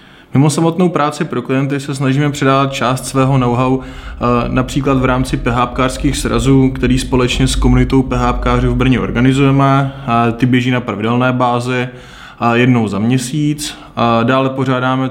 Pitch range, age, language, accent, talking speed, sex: 115-130 Hz, 20-39, Czech, native, 135 wpm, male